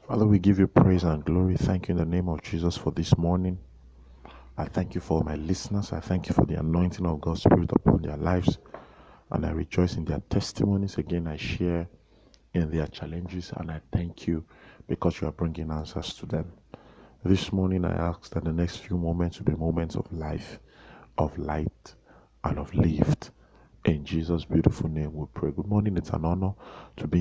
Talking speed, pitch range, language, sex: 200 wpm, 80-90 Hz, English, male